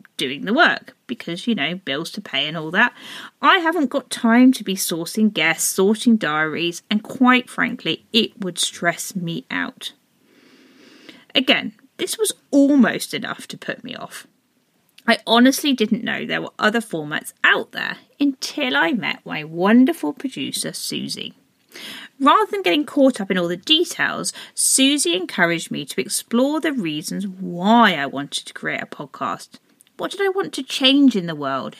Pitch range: 200-280 Hz